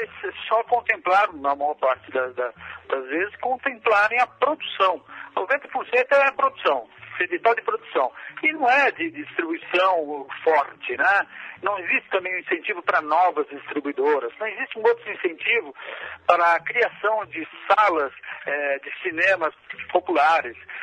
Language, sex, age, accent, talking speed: Portuguese, male, 60-79, Brazilian, 135 wpm